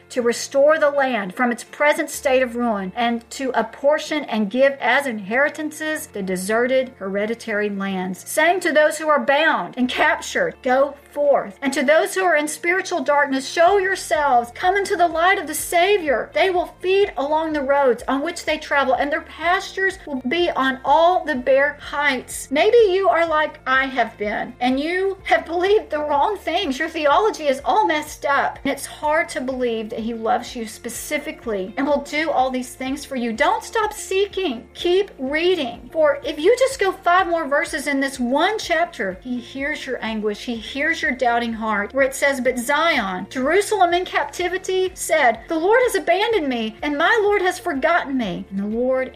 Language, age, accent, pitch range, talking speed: English, 50-69, American, 250-340 Hz, 185 wpm